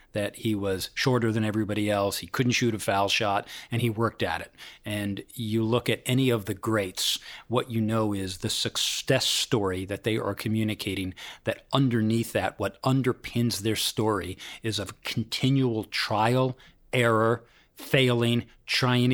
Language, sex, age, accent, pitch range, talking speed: English, male, 40-59, American, 105-120 Hz, 160 wpm